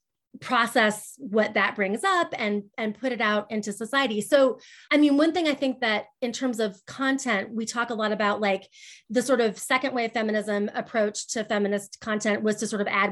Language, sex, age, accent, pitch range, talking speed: English, female, 30-49, American, 205-260 Hz, 205 wpm